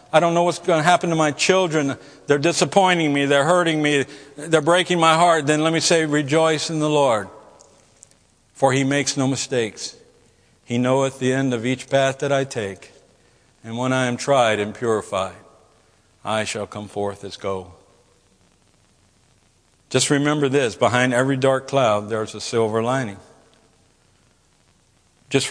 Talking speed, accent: 160 wpm, American